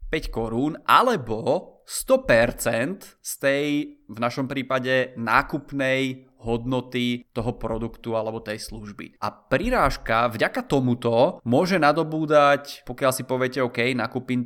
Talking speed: 120 wpm